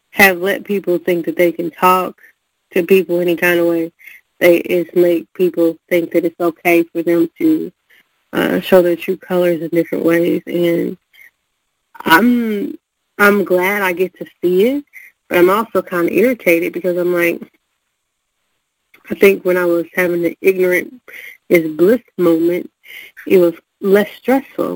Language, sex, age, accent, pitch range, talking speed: English, female, 30-49, American, 170-200 Hz, 160 wpm